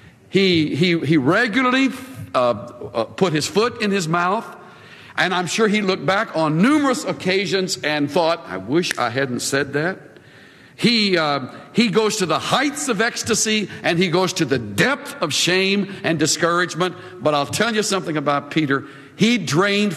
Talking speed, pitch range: 170 wpm, 140-195 Hz